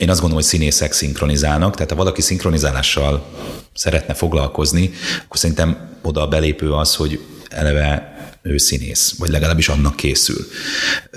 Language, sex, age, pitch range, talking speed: Hungarian, male, 30-49, 75-85 Hz, 140 wpm